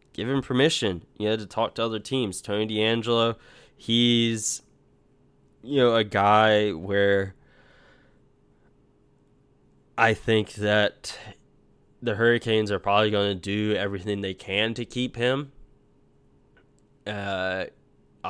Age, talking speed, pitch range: 20-39, 110 wpm, 100-115 Hz